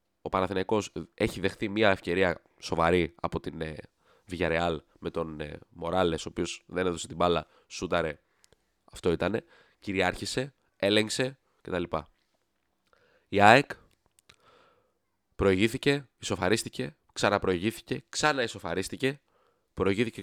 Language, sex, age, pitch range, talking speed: Greek, male, 20-39, 85-110 Hz, 100 wpm